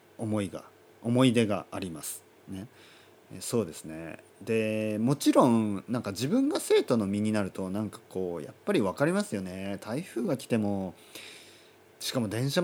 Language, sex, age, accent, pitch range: Japanese, male, 40-59, native, 95-125 Hz